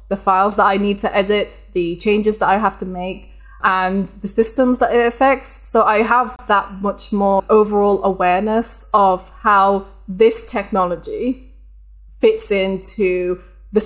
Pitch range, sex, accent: 185-215 Hz, female, British